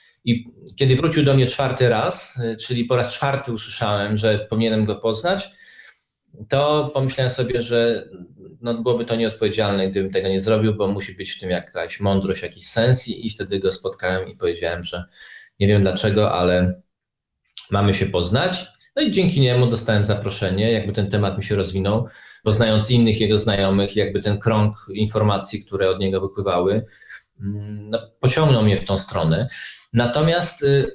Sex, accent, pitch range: male, native, 105-130 Hz